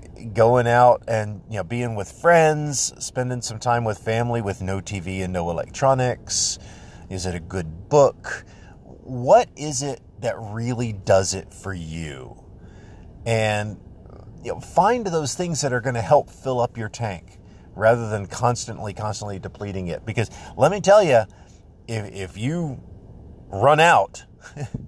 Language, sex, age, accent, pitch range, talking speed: English, male, 40-59, American, 95-120 Hz, 150 wpm